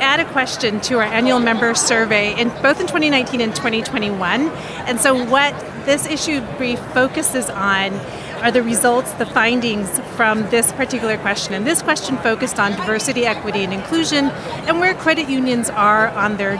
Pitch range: 215-265 Hz